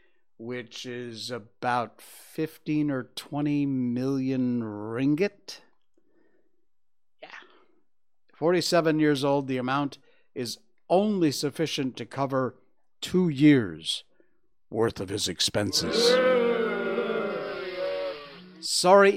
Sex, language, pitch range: male, English, 115-155 Hz